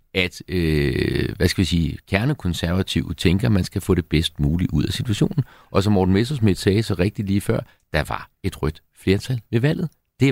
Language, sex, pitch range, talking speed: Danish, male, 85-120 Hz, 205 wpm